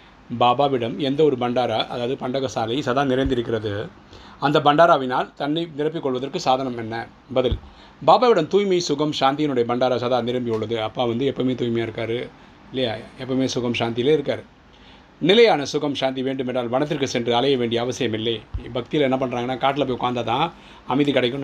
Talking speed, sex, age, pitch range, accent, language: 145 wpm, male, 30-49, 120-145 Hz, native, Tamil